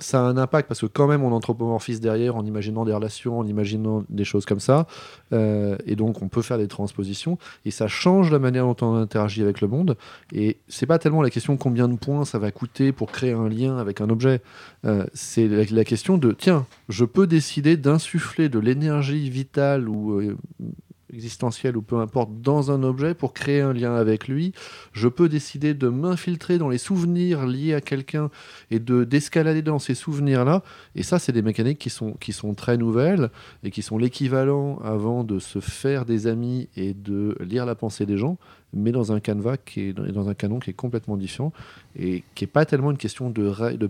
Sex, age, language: male, 30-49, French